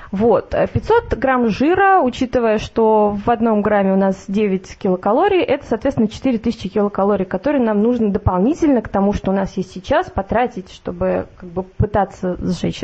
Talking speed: 145 wpm